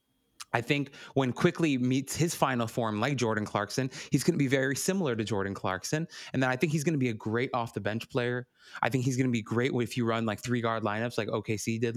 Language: English